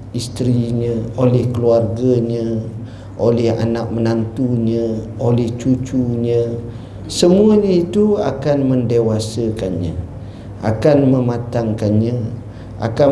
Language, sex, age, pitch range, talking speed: Malay, male, 50-69, 105-130 Hz, 75 wpm